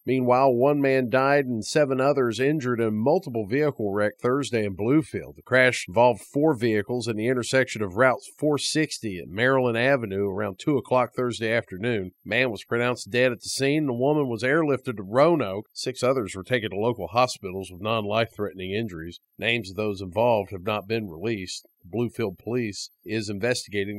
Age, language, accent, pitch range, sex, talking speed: 50-69, English, American, 115-155 Hz, male, 185 wpm